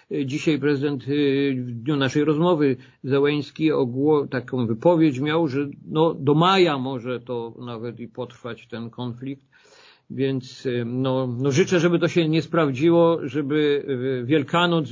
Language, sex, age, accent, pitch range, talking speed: Polish, male, 50-69, native, 125-150 Hz, 135 wpm